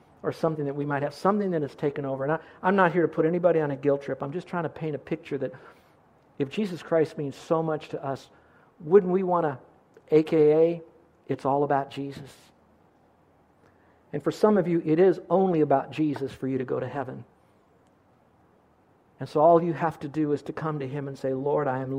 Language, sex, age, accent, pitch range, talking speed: English, male, 50-69, American, 135-160 Hz, 220 wpm